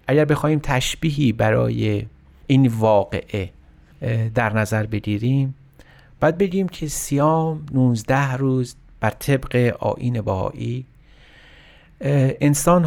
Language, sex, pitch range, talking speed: Persian, male, 105-135 Hz, 95 wpm